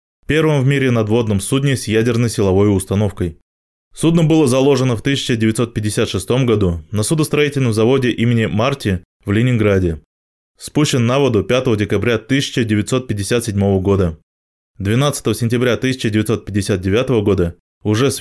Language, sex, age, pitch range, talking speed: Russian, male, 20-39, 100-125 Hz, 115 wpm